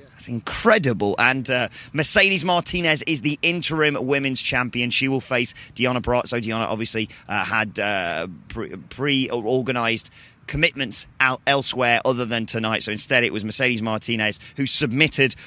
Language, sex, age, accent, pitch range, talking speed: English, male, 30-49, British, 115-140 Hz, 140 wpm